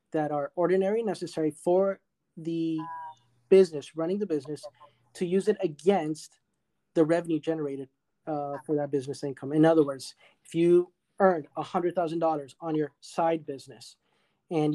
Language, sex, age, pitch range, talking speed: English, male, 30-49, 155-185 Hz, 150 wpm